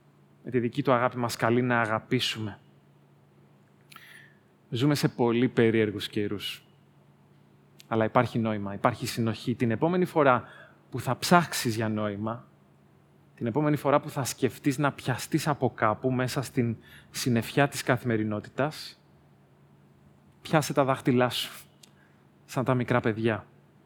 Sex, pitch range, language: male, 105-130 Hz, Greek